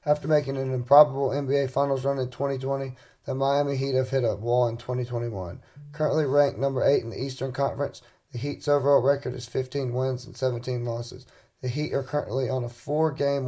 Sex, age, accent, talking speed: male, 30-49, American, 190 wpm